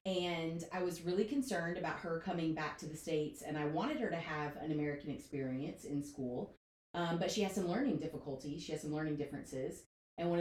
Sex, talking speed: female, 215 wpm